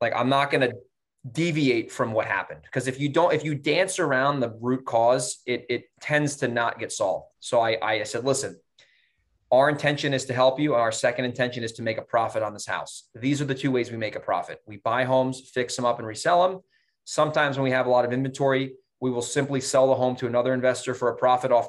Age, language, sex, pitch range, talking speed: 20-39, English, male, 115-145 Hz, 245 wpm